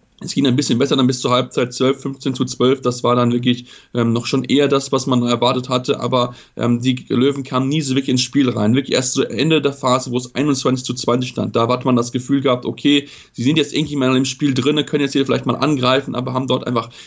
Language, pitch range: German, 125-140 Hz